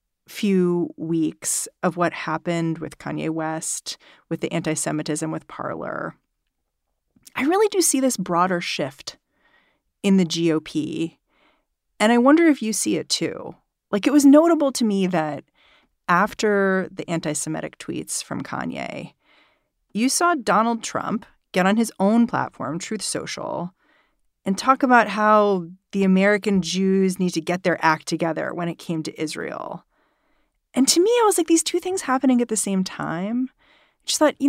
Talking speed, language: 160 wpm, English